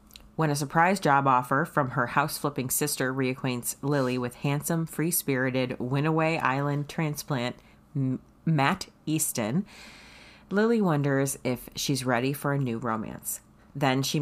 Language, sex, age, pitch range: English, female, 30-49, 130-160 Hz